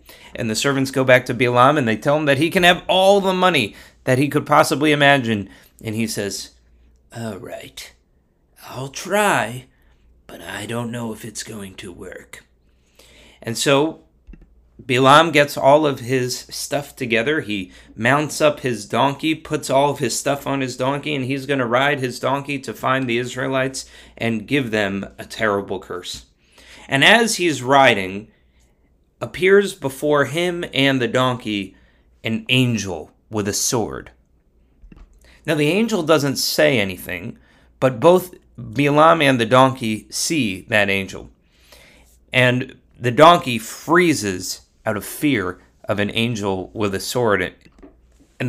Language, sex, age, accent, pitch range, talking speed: English, male, 30-49, American, 105-145 Hz, 150 wpm